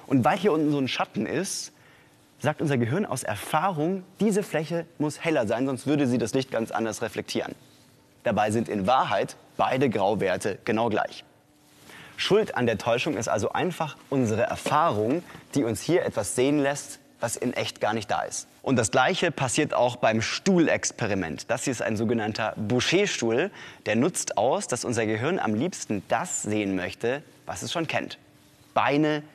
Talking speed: 175 wpm